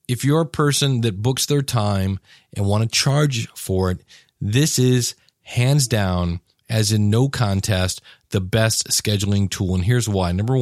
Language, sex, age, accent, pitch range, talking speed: English, male, 40-59, American, 100-130 Hz, 170 wpm